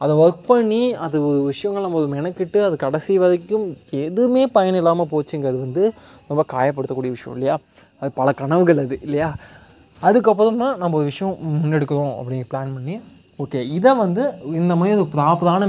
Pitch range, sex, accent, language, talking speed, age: 140-190 Hz, male, native, Tamil, 155 wpm, 20-39